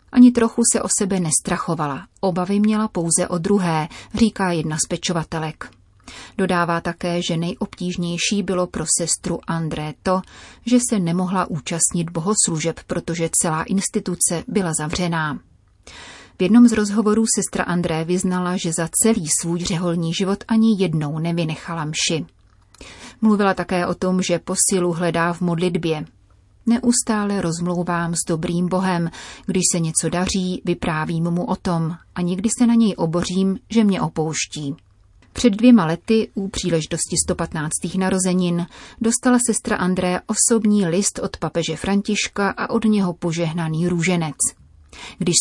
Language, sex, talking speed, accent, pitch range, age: Czech, female, 135 wpm, native, 165-200 Hz, 30-49